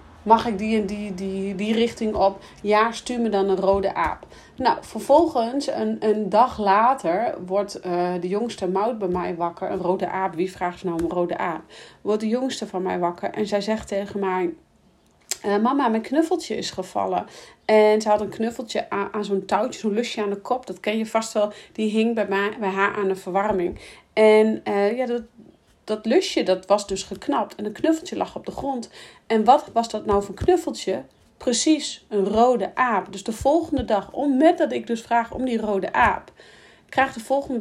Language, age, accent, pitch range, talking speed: Dutch, 40-59, Dutch, 195-230 Hz, 205 wpm